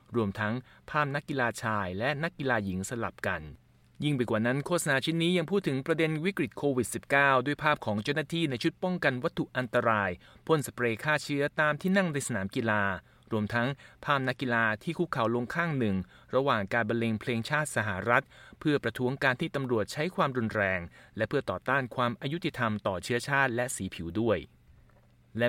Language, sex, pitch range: Thai, male, 110-150 Hz